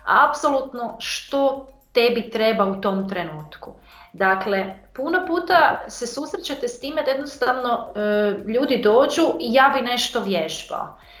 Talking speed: 125 wpm